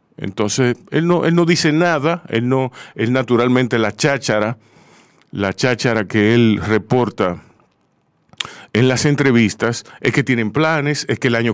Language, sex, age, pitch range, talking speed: Spanish, male, 40-59, 110-145 Hz, 150 wpm